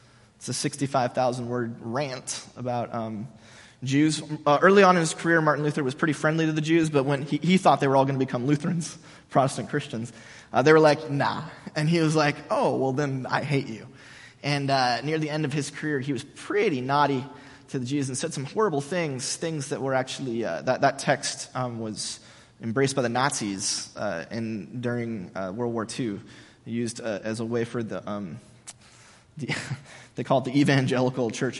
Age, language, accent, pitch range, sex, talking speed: 20-39, English, American, 120-150 Hz, male, 195 wpm